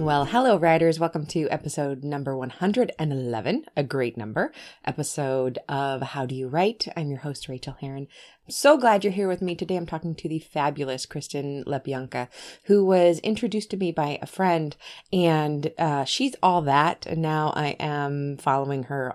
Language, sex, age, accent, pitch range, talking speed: English, female, 20-39, American, 135-185 Hz, 170 wpm